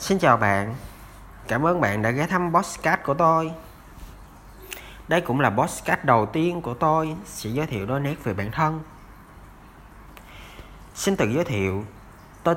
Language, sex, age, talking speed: Vietnamese, male, 20-39, 160 wpm